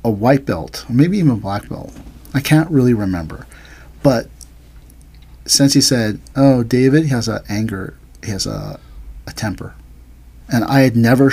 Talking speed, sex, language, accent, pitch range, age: 170 wpm, male, English, American, 95-130 Hz, 40-59